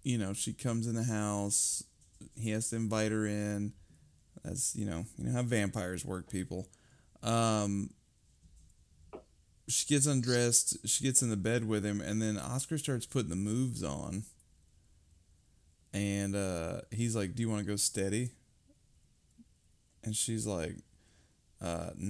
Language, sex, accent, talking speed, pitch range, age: English, male, American, 150 wpm, 100-125 Hz, 20-39